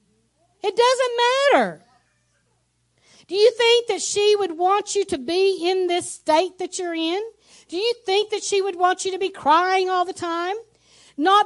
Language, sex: English, female